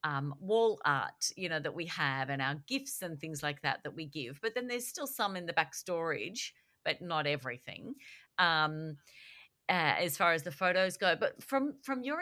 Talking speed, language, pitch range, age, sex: 205 wpm, English, 155-205 Hz, 30-49, female